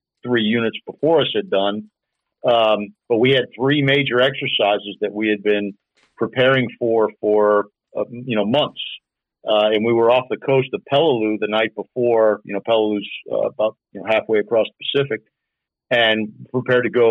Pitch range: 105-115 Hz